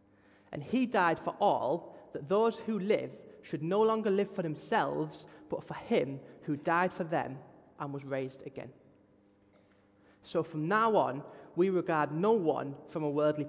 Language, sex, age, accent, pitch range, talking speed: English, male, 30-49, British, 135-185 Hz, 165 wpm